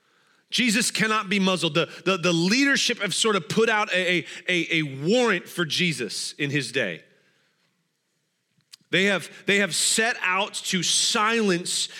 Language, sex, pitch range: English, male, 165-195 Hz